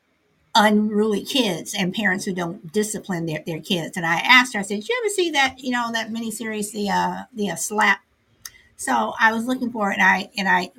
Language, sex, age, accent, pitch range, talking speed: English, female, 60-79, American, 185-250 Hz, 230 wpm